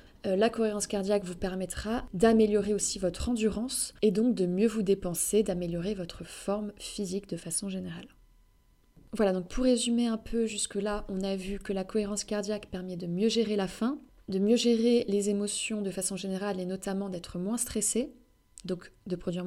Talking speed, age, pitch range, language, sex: 180 wpm, 20-39, 195-230 Hz, French, female